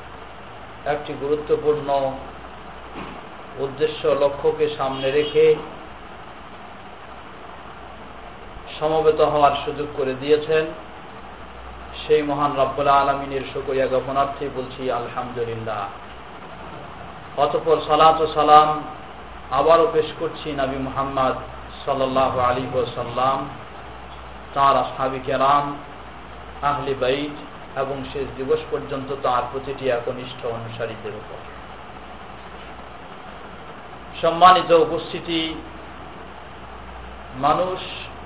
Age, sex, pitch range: 50-69, male, 130-170 Hz